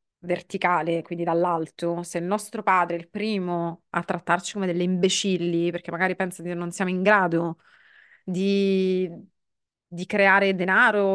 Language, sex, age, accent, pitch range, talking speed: English, female, 30-49, Italian, 175-200 Hz, 145 wpm